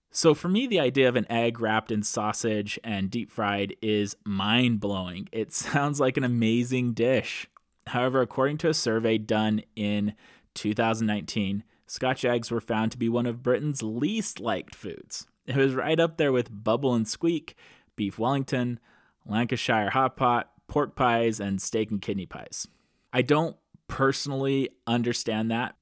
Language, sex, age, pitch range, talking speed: English, male, 20-39, 105-130 Hz, 155 wpm